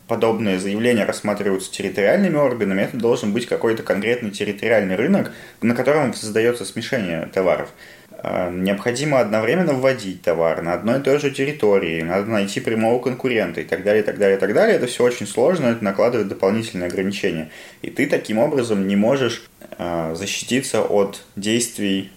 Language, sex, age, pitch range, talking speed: Russian, male, 20-39, 95-115 Hz, 155 wpm